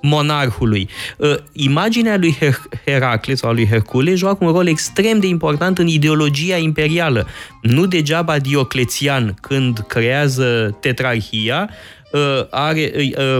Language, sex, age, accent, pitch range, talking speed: Romanian, male, 20-39, native, 115-155 Hz, 110 wpm